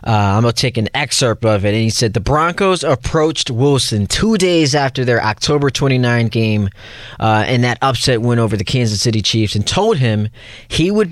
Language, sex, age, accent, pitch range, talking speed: English, male, 20-39, American, 110-140 Hz, 205 wpm